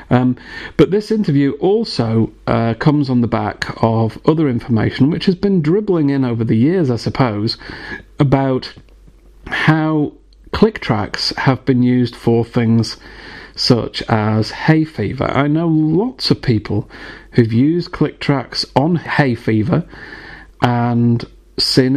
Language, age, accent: English, 40-59, British